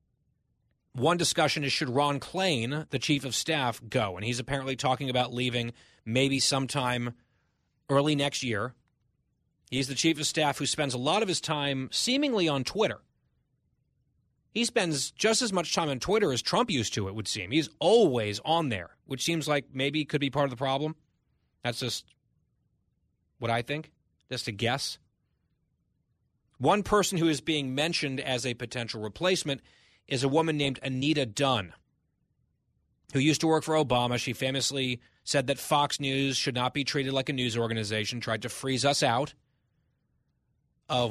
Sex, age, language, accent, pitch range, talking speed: male, 30-49, English, American, 120-150 Hz, 170 wpm